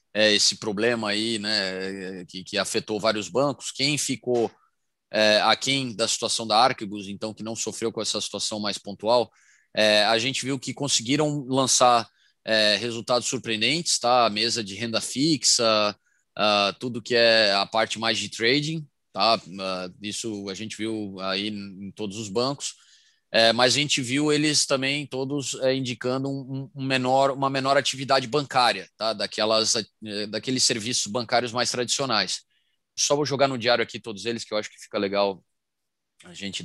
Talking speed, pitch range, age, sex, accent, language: 170 wpm, 105-130 Hz, 20-39, male, Brazilian, Portuguese